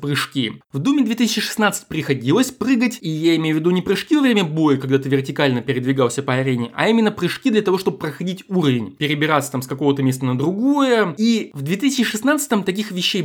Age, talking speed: 20-39, 190 wpm